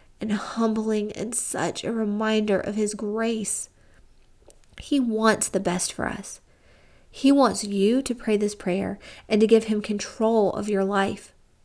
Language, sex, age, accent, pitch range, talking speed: English, female, 40-59, American, 200-245 Hz, 155 wpm